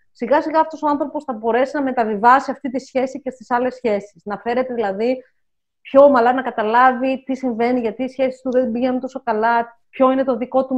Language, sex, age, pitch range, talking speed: Greek, female, 30-49, 230-285 Hz, 210 wpm